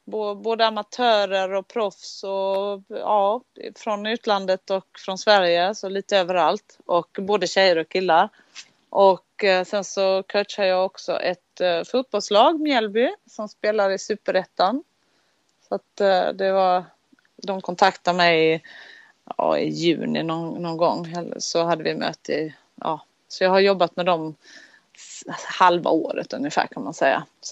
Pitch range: 170-210 Hz